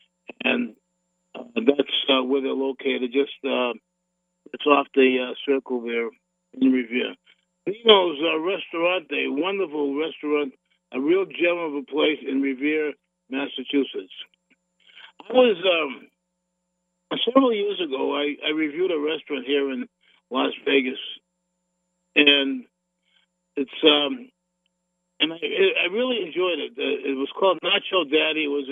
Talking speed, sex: 130 wpm, male